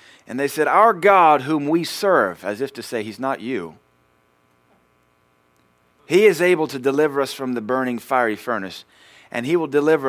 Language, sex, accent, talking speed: English, male, American, 180 wpm